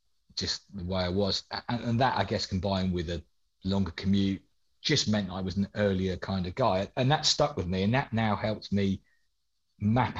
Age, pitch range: 40-59, 95-105 Hz